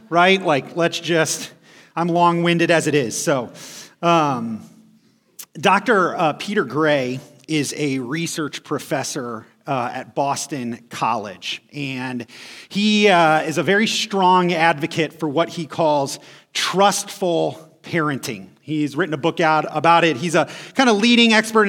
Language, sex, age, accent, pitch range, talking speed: English, male, 30-49, American, 155-195 Hz, 140 wpm